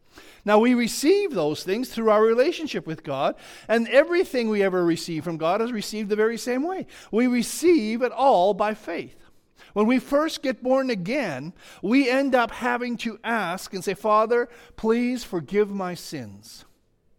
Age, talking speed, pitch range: 50-69, 170 wpm, 190-275 Hz